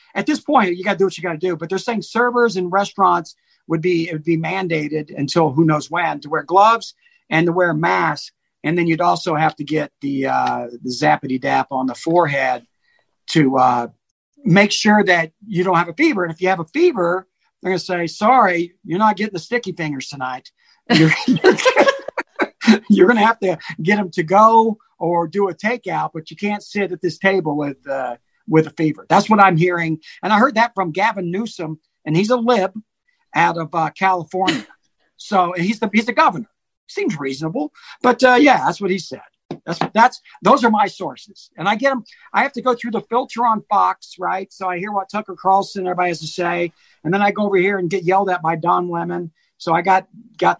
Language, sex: English, male